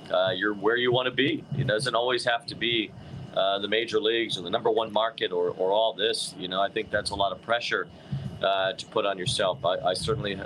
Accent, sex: American, male